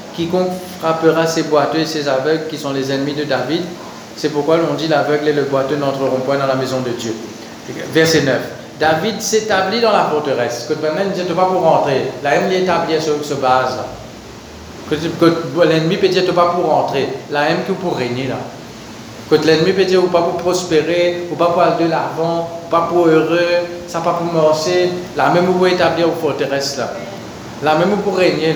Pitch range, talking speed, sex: 150-185 Hz, 200 wpm, male